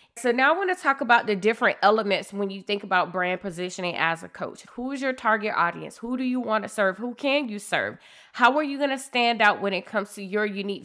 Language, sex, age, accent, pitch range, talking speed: English, female, 20-39, American, 185-235 Hz, 260 wpm